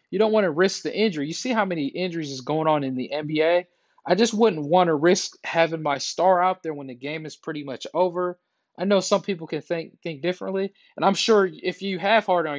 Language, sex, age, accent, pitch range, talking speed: English, male, 20-39, American, 155-195 Hz, 250 wpm